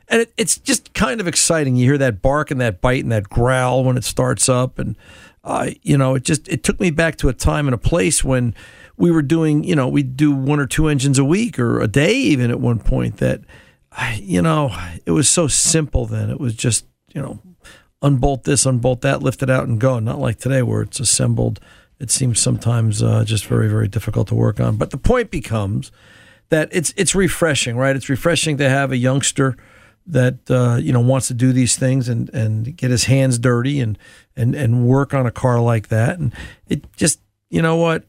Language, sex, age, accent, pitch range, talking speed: English, male, 50-69, American, 110-140 Hz, 225 wpm